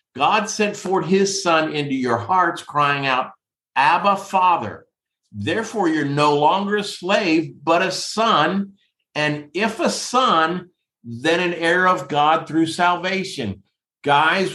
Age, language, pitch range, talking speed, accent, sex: 50-69, English, 150-195 Hz, 135 wpm, American, male